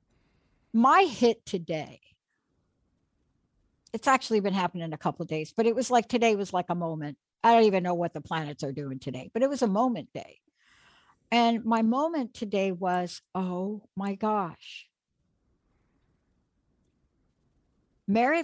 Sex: female